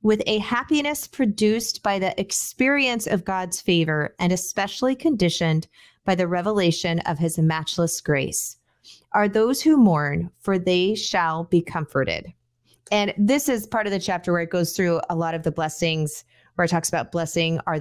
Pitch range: 165-210 Hz